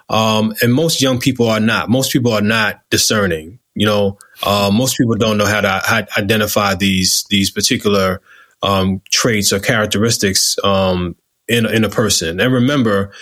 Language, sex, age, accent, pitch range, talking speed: English, male, 20-39, American, 105-120 Hz, 175 wpm